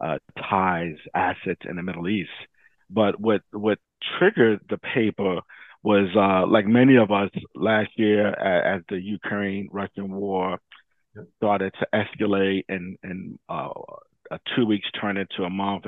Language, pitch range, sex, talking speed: English, 95-105 Hz, male, 150 wpm